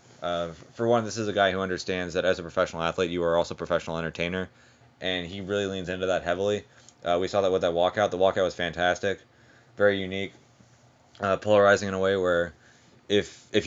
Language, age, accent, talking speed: English, 20-39, American, 210 wpm